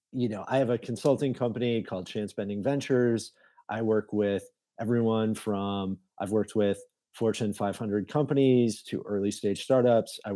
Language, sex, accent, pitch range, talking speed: English, male, American, 115-140 Hz, 155 wpm